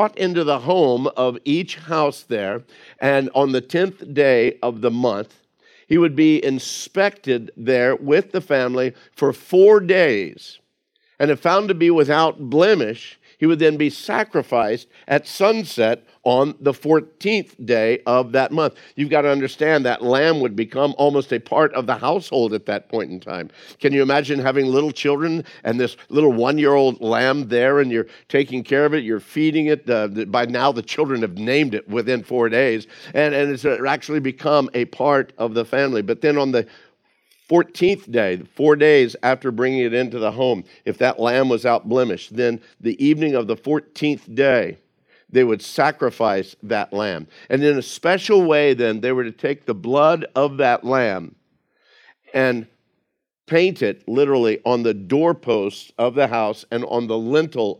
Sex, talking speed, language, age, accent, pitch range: male, 175 wpm, English, 50-69, American, 120-150 Hz